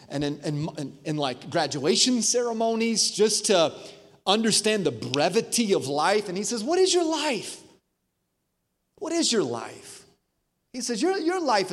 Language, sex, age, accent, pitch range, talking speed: English, male, 30-49, American, 165-230 Hz, 160 wpm